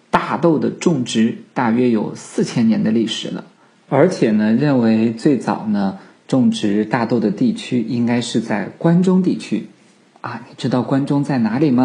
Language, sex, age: Chinese, male, 50-69